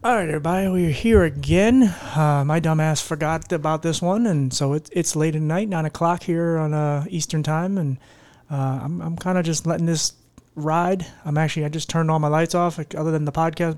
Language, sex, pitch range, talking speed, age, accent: English, male, 140-165 Hz, 220 wpm, 30-49, American